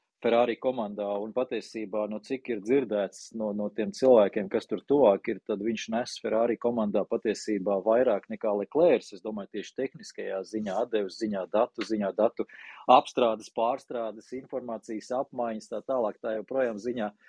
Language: English